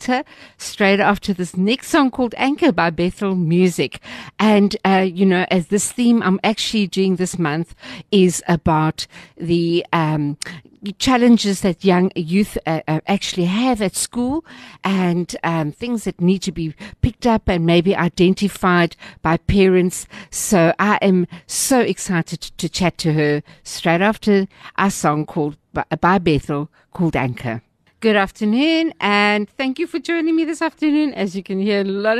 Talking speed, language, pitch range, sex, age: 155 wpm, English, 165-205 Hz, female, 60-79